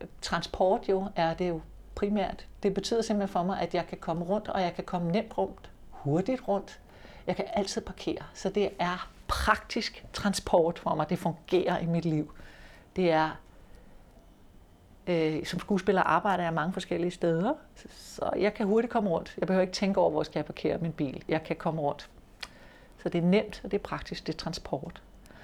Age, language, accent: 60-79, Danish, native